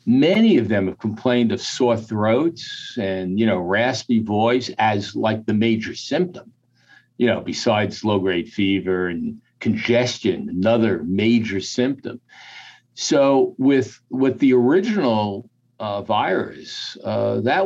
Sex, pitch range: male, 100-120 Hz